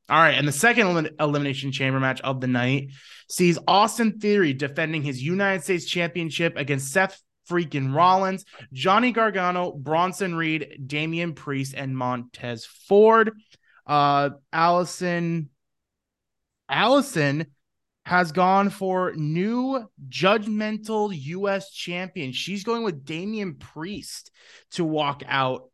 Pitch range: 135-190 Hz